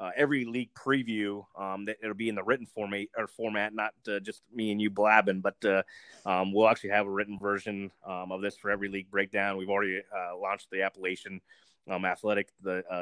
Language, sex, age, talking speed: English, male, 30-49, 215 wpm